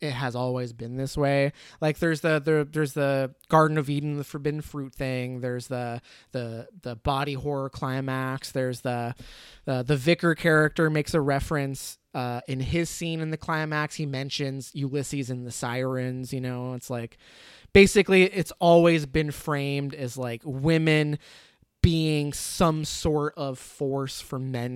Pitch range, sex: 130-160 Hz, male